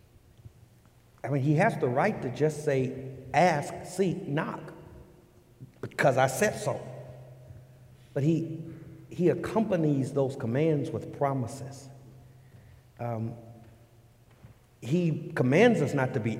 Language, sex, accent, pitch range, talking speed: English, male, American, 115-140 Hz, 115 wpm